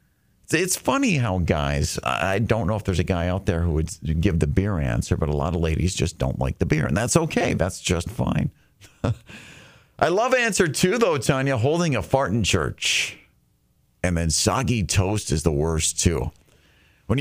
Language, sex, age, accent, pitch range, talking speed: English, male, 40-59, American, 85-105 Hz, 190 wpm